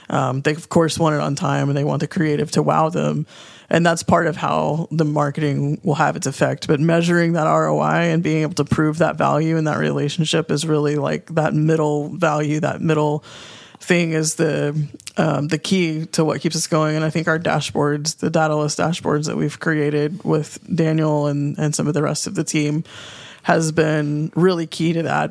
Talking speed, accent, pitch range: 210 wpm, American, 145-160 Hz